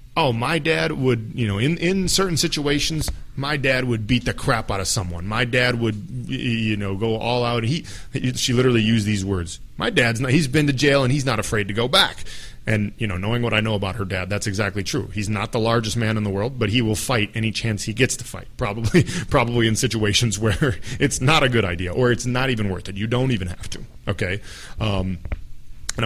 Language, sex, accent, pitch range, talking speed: English, male, American, 105-130 Hz, 235 wpm